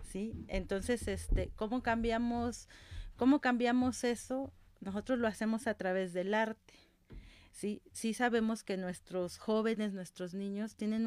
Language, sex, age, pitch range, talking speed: Spanish, female, 30-49, 185-225 Hz, 130 wpm